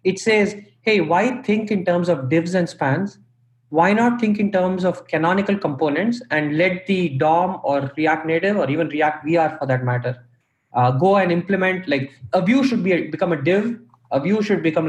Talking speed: 200 wpm